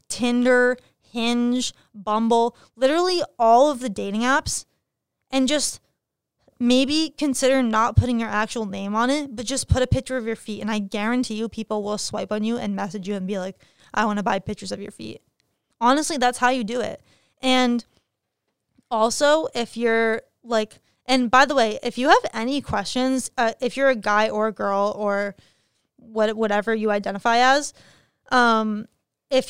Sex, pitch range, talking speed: female, 210-250 Hz, 175 wpm